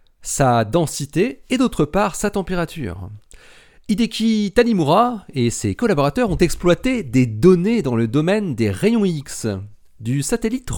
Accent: French